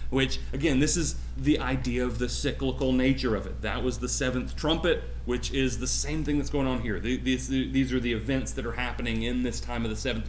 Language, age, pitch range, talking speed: English, 30-49, 100-145 Hz, 225 wpm